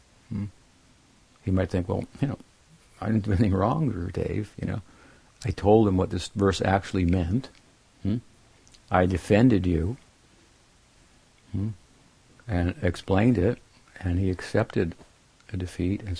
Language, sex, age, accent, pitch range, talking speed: English, male, 60-79, American, 90-105 Hz, 135 wpm